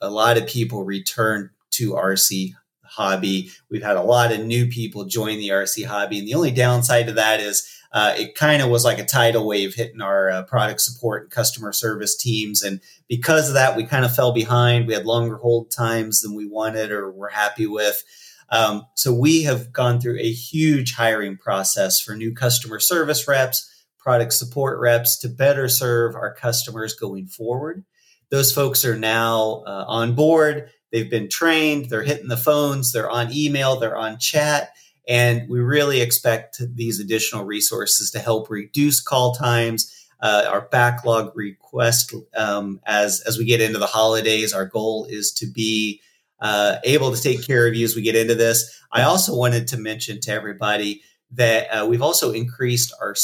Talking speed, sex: 185 wpm, male